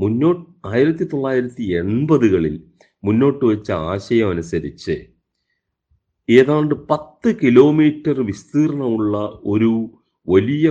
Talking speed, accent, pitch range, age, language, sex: 65 wpm, native, 95-150 Hz, 40-59, Malayalam, male